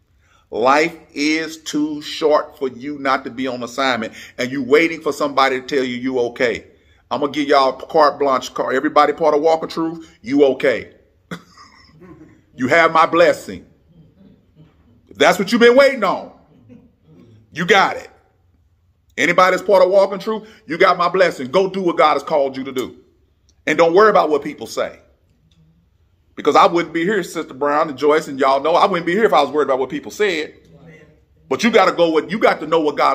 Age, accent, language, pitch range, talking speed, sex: 40-59, American, English, 130-195 Hz, 200 wpm, male